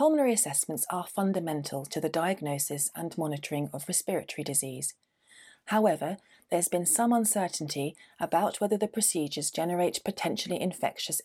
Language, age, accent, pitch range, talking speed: English, 30-49, British, 150-200 Hz, 130 wpm